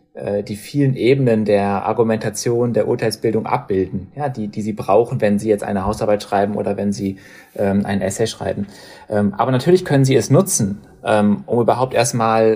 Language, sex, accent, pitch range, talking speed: German, male, German, 105-125 Hz, 175 wpm